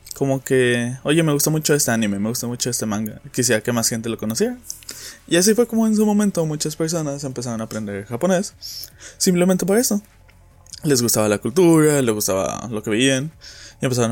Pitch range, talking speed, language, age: 110-145 Hz, 195 wpm, Spanish, 20-39